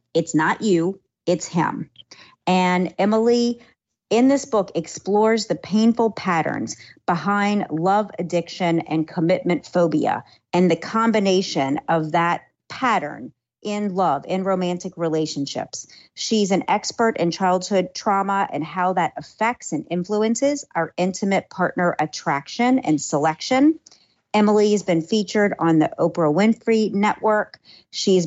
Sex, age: female, 40-59